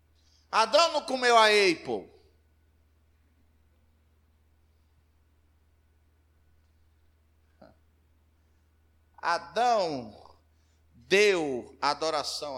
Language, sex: Portuguese, male